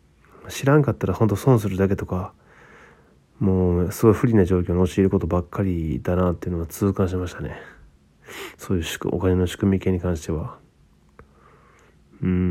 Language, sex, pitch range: Japanese, male, 75-100 Hz